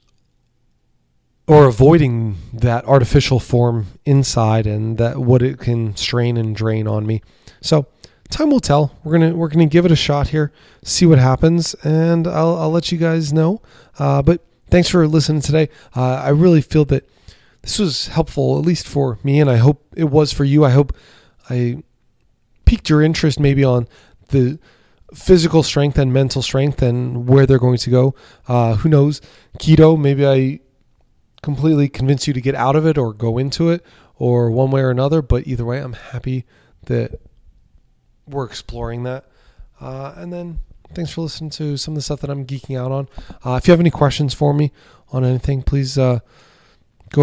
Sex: male